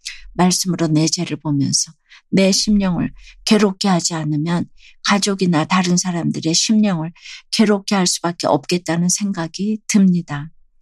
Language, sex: Korean, female